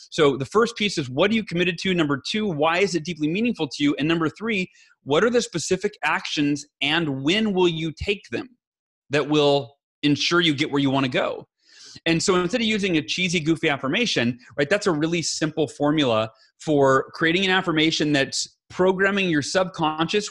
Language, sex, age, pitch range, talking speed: English, male, 30-49, 140-185 Hz, 195 wpm